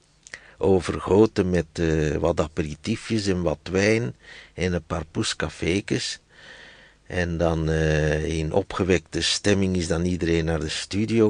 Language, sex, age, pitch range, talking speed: Dutch, male, 60-79, 85-110 Hz, 125 wpm